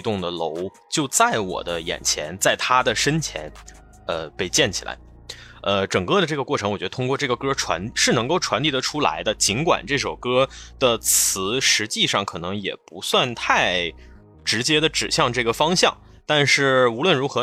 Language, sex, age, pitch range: Chinese, male, 20-39, 95-135 Hz